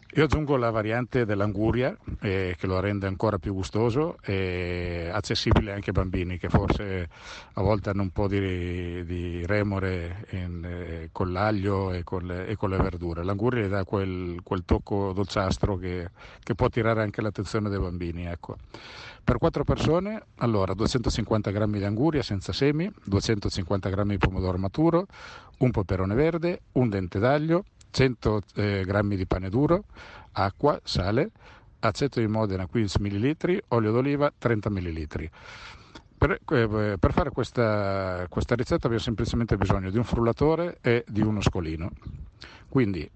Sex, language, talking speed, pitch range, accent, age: male, Italian, 155 wpm, 95-115 Hz, native, 50-69